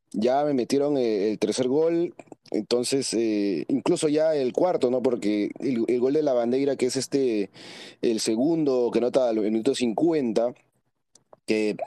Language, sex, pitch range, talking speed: Spanish, male, 110-135 Hz, 155 wpm